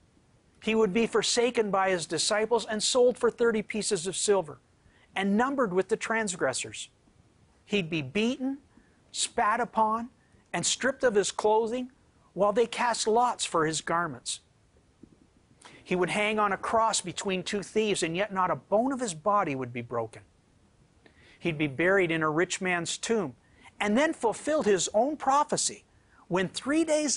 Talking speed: 160 wpm